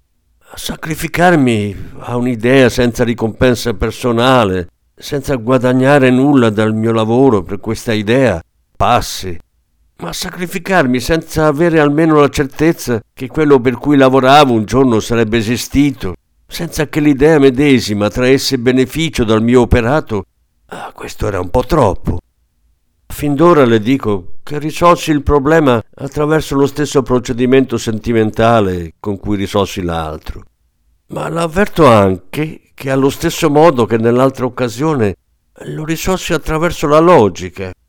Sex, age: male, 50-69